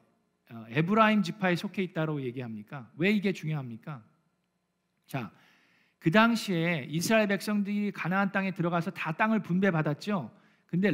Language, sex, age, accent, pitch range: Korean, male, 40-59, native, 160-210 Hz